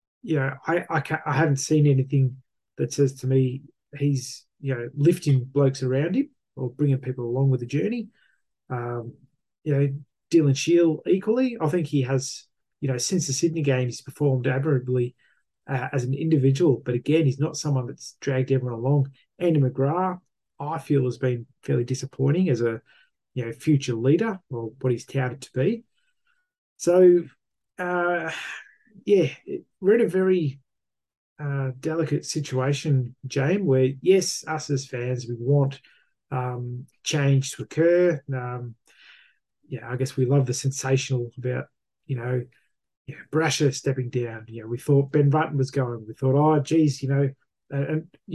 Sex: male